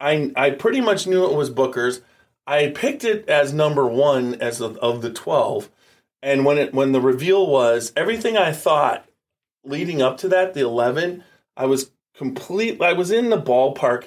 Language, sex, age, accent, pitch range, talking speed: English, male, 30-49, American, 120-150 Hz, 185 wpm